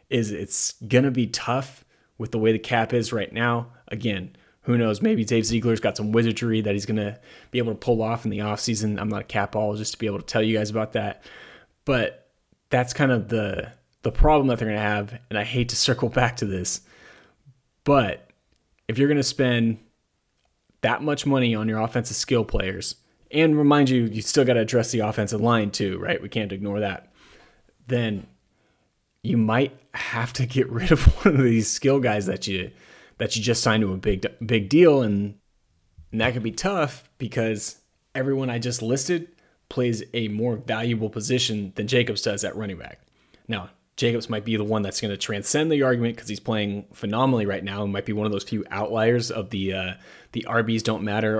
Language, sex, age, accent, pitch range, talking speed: English, male, 20-39, American, 105-125 Hz, 210 wpm